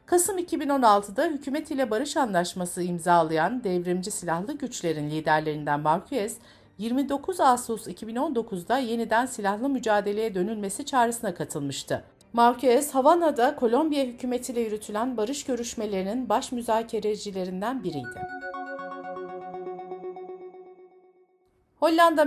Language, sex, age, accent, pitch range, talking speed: Turkish, female, 50-69, native, 185-265 Hz, 85 wpm